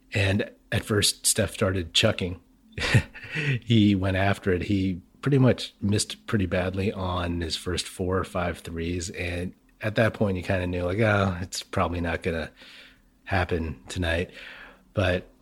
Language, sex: English, male